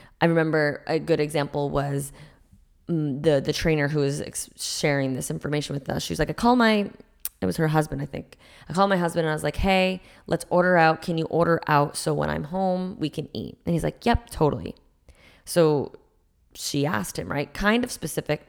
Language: English